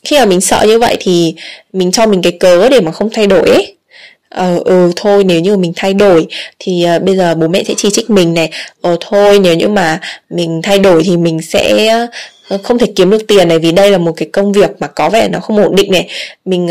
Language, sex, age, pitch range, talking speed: Vietnamese, female, 10-29, 175-220 Hz, 250 wpm